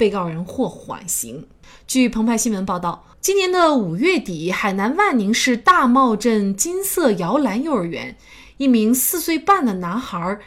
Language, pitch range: Chinese, 185-270 Hz